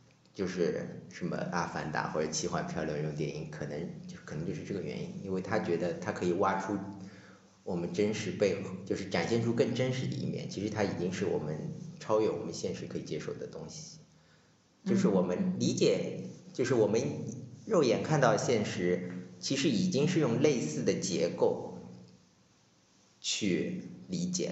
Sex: male